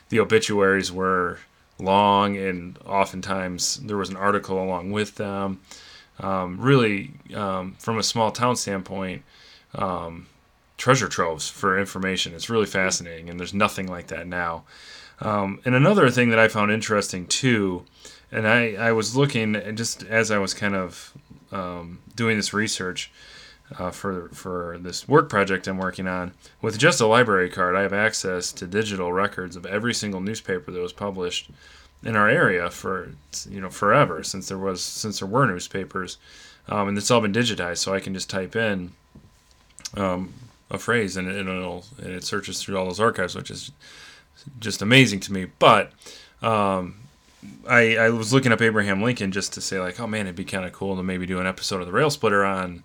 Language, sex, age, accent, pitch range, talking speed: English, male, 20-39, American, 90-110 Hz, 180 wpm